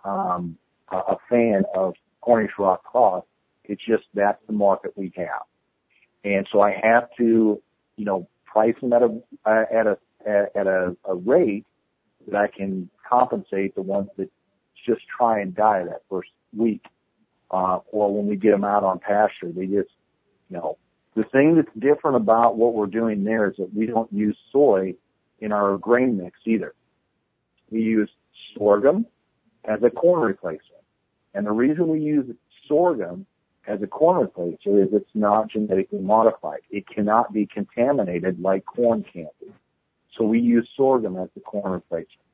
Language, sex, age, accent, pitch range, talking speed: English, male, 50-69, American, 100-120 Hz, 165 wpm